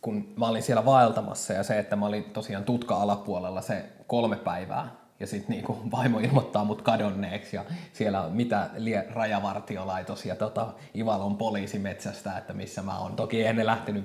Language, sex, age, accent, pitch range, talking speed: Finnish, male, 20-39, native, 105-130 Hz, 160 wpm